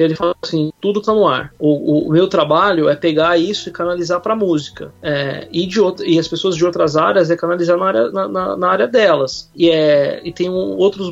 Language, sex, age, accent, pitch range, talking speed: Portuguese, male, 20-39, Brazilian, 160-200 Hz, 235 wpm